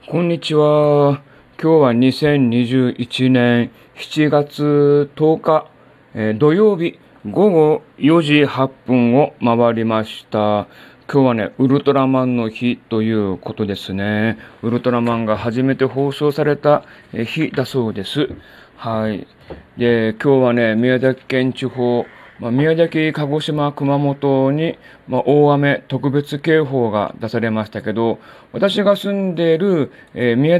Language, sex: Japanese, male